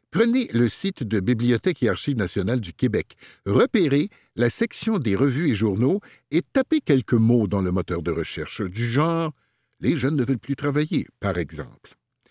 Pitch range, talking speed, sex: 105-165 Hz, 175 wpm, male